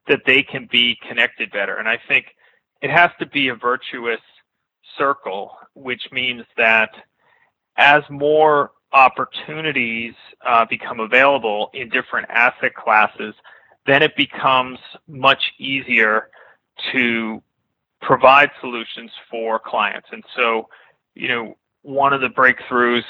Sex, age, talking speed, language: male, 30-49, 120 wpm, English